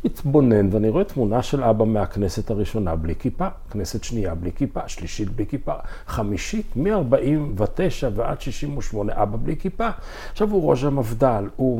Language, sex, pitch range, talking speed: Hebrew, male, 95-140 Hz, 145 wpm